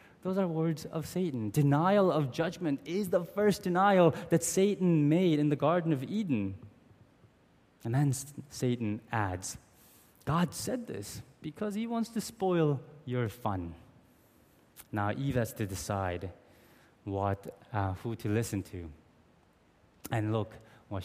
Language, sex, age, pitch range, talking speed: English, male, 20-39, 105-165 Hz, 135 wpm